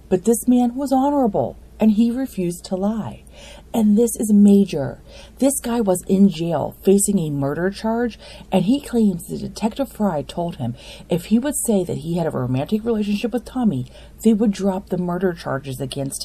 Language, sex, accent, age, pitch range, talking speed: English, female, American, 40-59, 180-250 Hz, 185 wpm